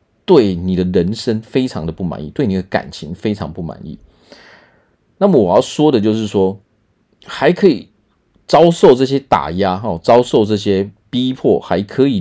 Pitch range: 90-110 Hz